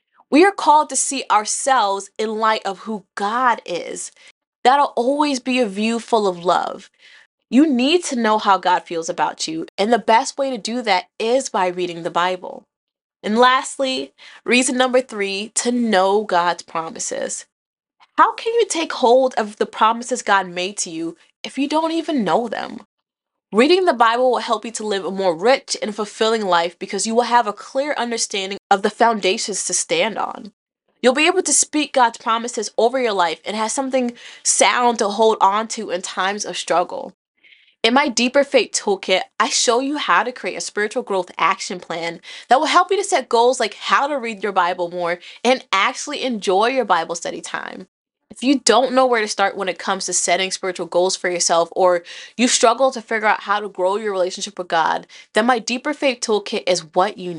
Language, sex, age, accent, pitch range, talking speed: English, female, 20-39, American, 190-255 Hz, 200 wpm